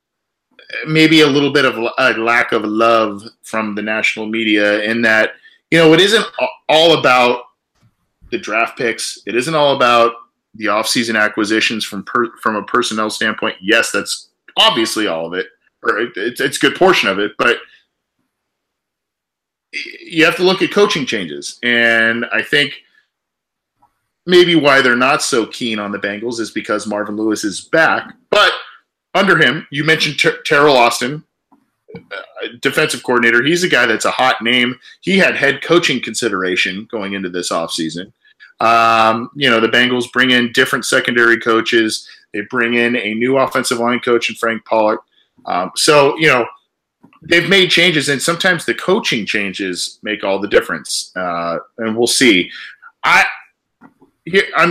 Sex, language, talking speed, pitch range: male, English, 160 wpm, 110-145 Hz